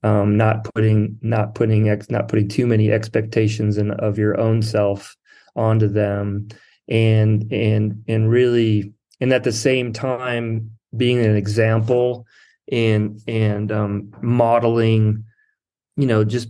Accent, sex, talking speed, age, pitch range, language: American, male, 135 wpm, 30-49, 105-120 Hz, English